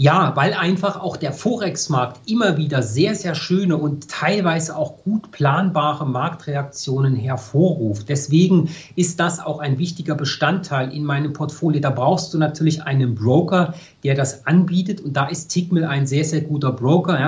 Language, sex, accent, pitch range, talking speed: German, male, German, 140-175 Hz, 160 wpm